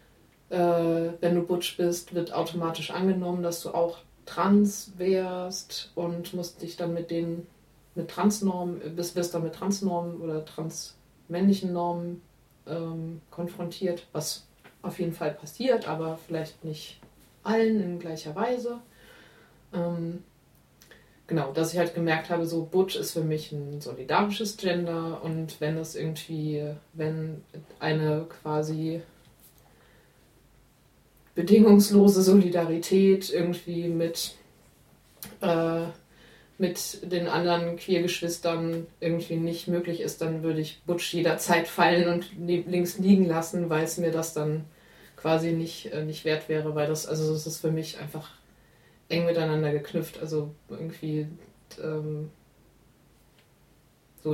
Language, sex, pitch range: German, female, 155-175 Hz